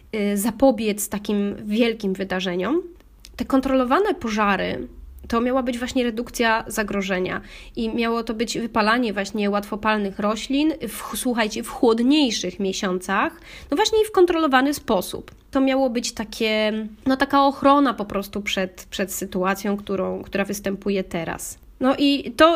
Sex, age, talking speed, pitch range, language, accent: female, 20-39, 135 wpm, 200-235 Hz, Polish, native